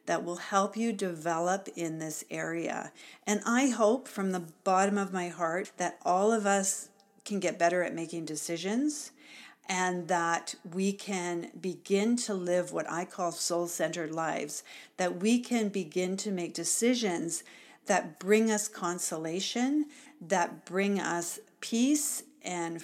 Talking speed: 145 wpm